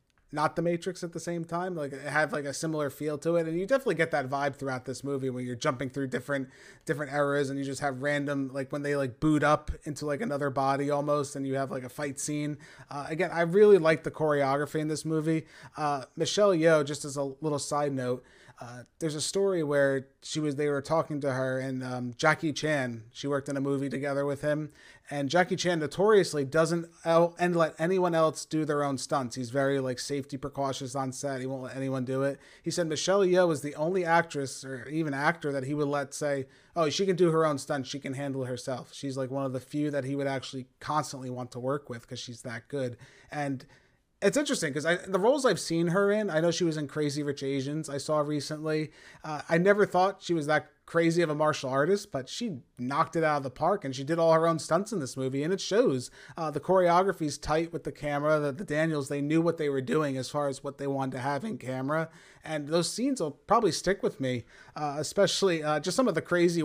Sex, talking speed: male, 240 wpm